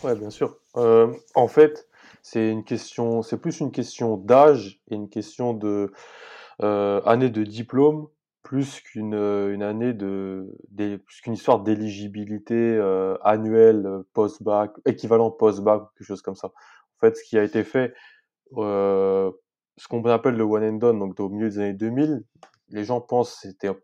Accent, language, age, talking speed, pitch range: French, French, 20-39, 170 wpm, 100-120 Hz